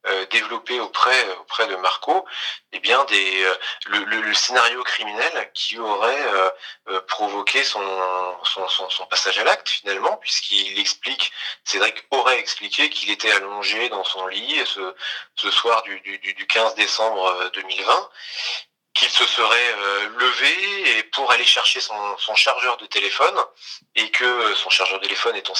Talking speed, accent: 160 wpm, French